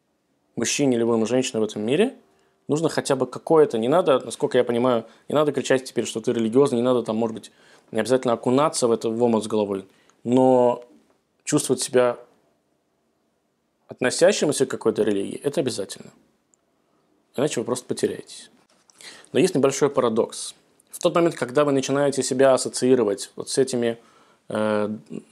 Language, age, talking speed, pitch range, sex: Russian, 20-39, 150 wpm, 115-135 Hz, male